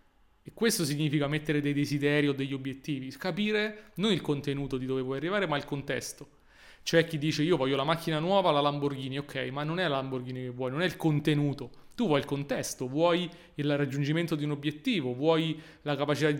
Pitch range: 135-165 Hz